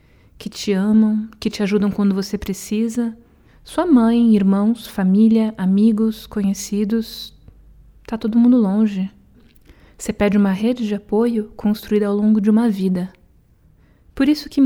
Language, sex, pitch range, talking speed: Portuguese, female, 185-220 Hz, 140 wpm